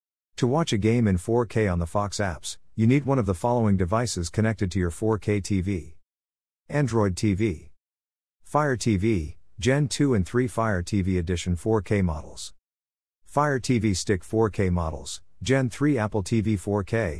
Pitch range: 85-115 Hz